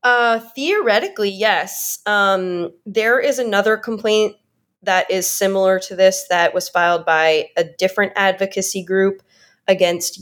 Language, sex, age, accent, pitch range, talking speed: English, female, 20-39, American, 175-210 Hz, 130 wpm